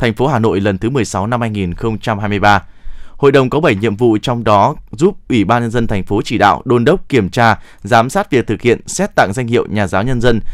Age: 20-39